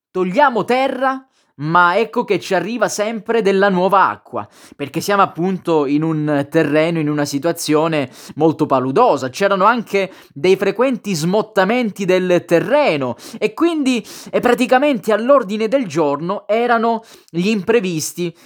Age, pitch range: 20-39, 150-210 Hz